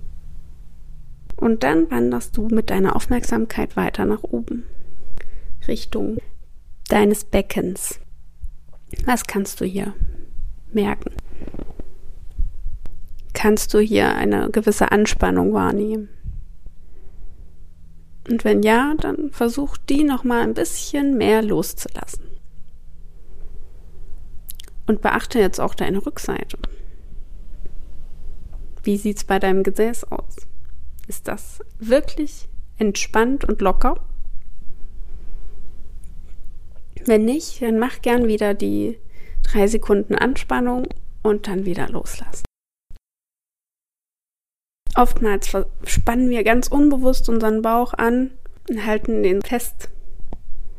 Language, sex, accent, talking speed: German, female, German, 95 wpm